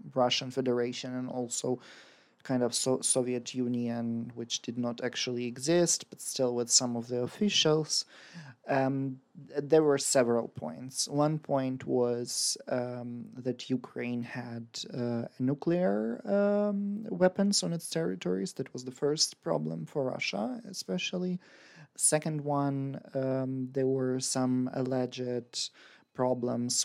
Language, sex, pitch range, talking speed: Ukrainian, male, 120-135 Hz, 125 wpm